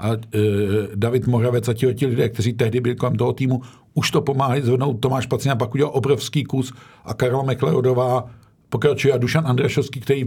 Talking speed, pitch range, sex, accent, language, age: 180 wpm, 110-135 Hz, male, native, Czech, 50-69